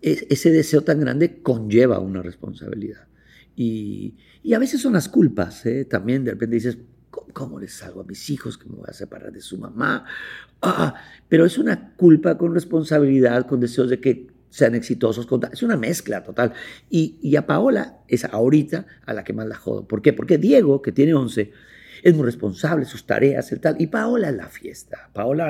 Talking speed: 195 wpm